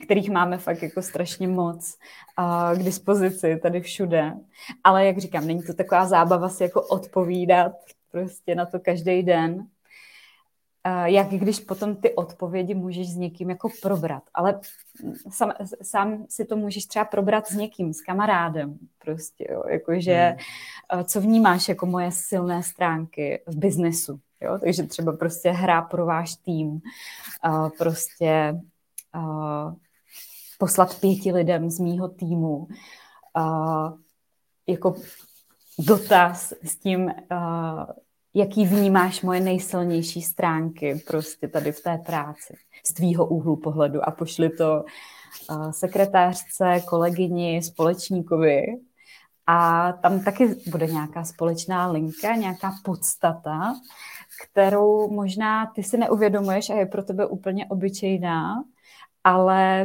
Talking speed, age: 115 wpm, 20-39